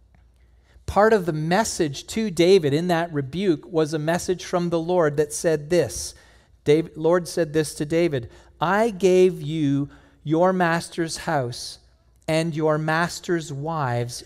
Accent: American